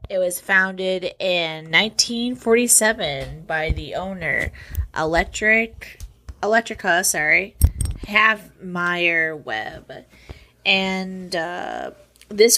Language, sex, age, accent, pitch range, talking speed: English, female, 20-39, American, 160-195 Hz, 80 wpm